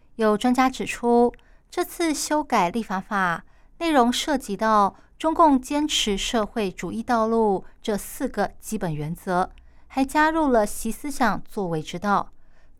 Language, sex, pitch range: Chinese, female, 190-255 Hz